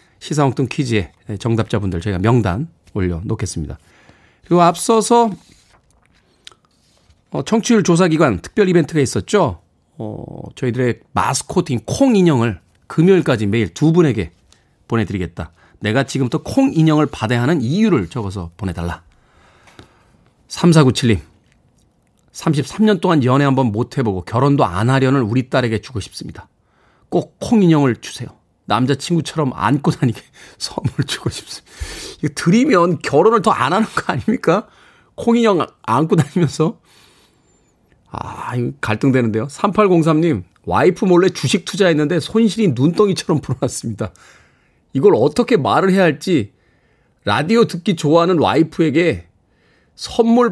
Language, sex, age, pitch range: Korean, male, 40-59, 115-170 Hz